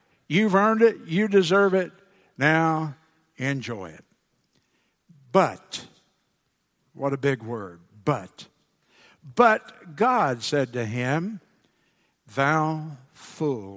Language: English